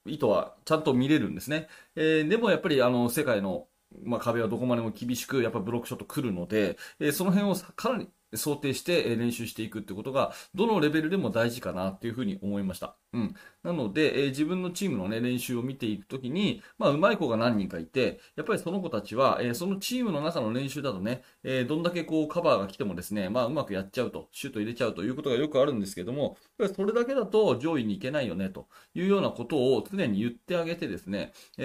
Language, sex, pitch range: Japanese, male, 110-170 Hz